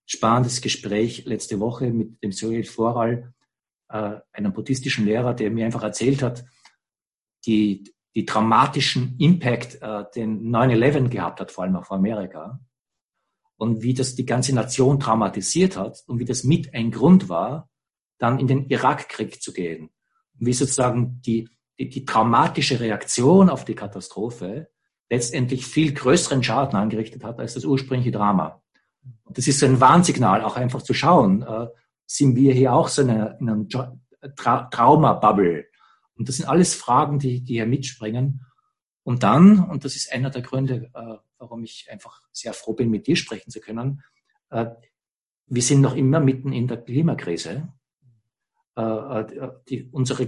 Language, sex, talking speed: English, male, 145 wpm